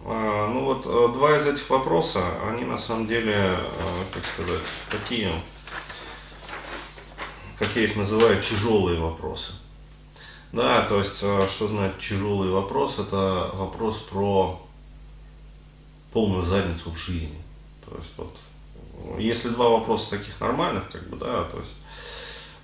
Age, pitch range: 30-49, 90-115 Hz